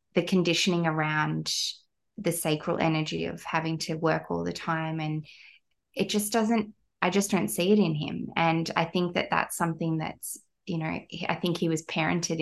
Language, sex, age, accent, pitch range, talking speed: English, female, 20-39, Australian, 160-190 Hz, 185 wpm